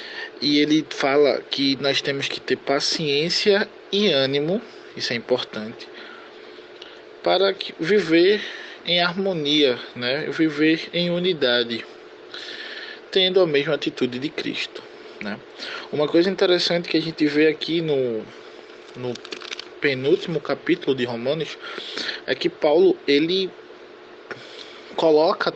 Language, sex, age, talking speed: Portuguese, male, 20-39, 110 wpm